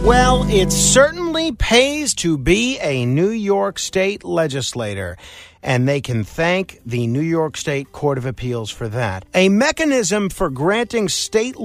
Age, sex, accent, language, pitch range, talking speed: 50-69, male, American, English, 140-200 Hz, 150 wpm